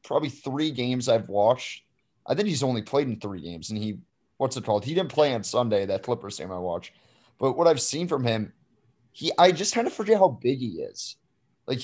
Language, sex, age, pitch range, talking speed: English, male, 30-49, 115-145 Hz, 230 wpm